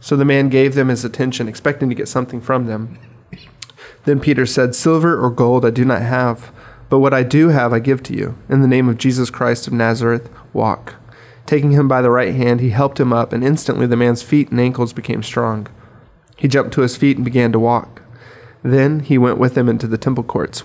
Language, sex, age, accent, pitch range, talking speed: English, male, 30-49, American, 120-135 Hz, 225 wpm